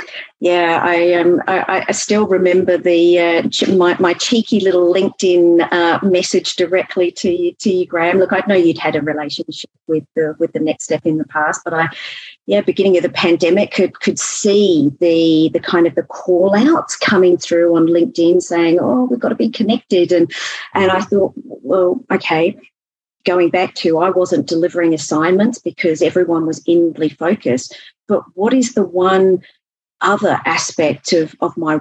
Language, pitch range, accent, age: English, 165-190 Hz, Australian, 40-59